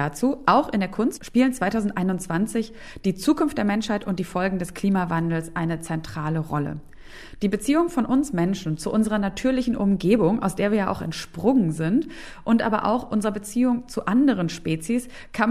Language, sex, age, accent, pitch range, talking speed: German, female, 30-49, German, 175-230 Hz, 170 wpm